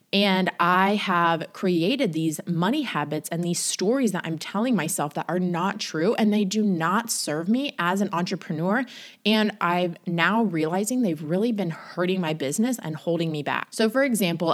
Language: English